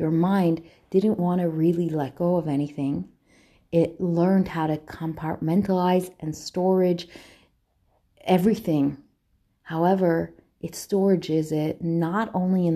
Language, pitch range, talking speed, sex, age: English, 160-190 Hz, 115 wpm, female, 30-49